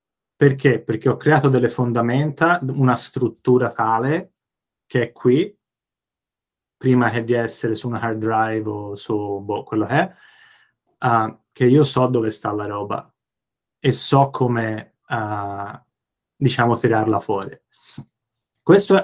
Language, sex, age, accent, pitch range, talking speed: Italian, male, 20-39, native, 115-140 Hz, 130 wpm